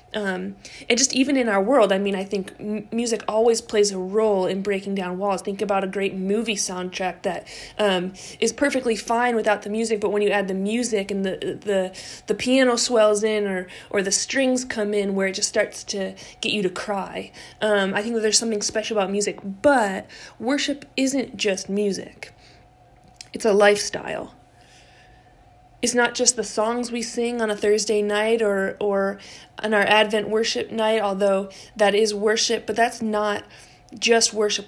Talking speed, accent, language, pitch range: 185 wpm, American, English, 195-225 Hz